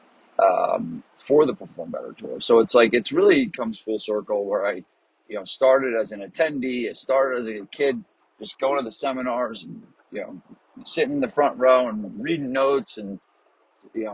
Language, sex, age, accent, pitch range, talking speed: English, male, 30-49, American, 110-185 Hz, 190 wpm